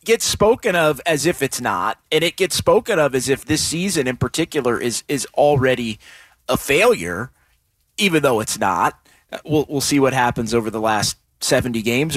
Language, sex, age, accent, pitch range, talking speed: English, male, 30-49, American, 130-195 Hz, 180 wpm